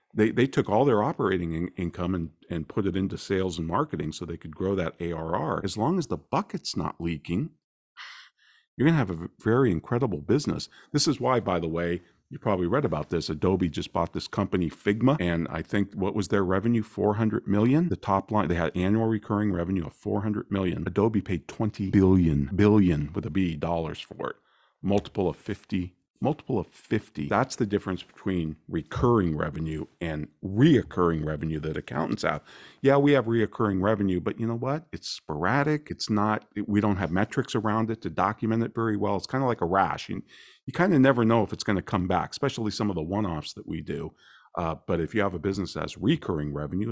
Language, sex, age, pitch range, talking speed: English, male, 50-69, 85-110 Hz, 210 wpm